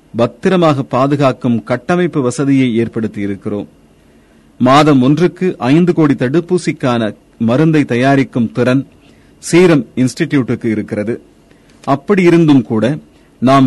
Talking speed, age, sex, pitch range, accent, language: 85 wpm, 40-59, male, 110-150 Hz, native, Tamil